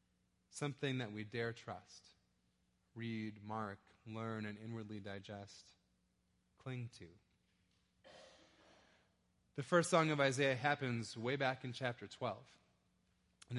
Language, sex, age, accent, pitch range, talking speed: English, male, 30-49, American, 105-135 Hz, 110 wpm